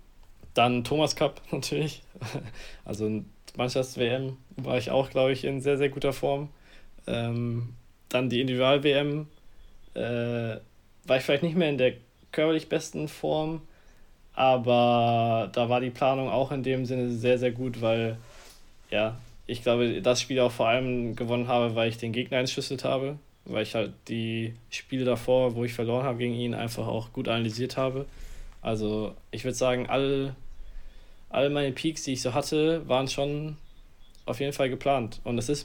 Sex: male